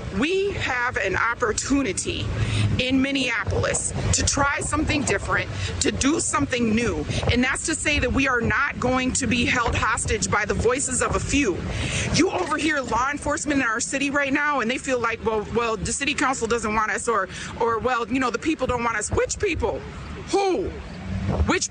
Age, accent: 40-59, American